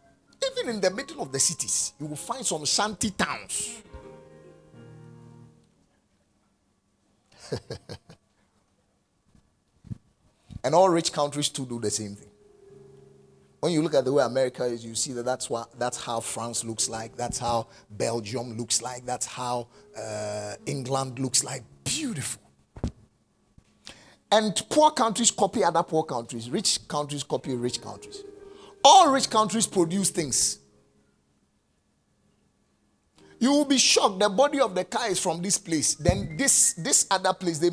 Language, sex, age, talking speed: English, male, 50-69, 135 wpm